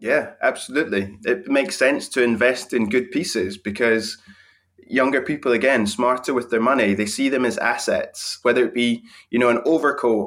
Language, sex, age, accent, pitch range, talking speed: English, male, 20-39, British, 120-150 Hz, 175 wpm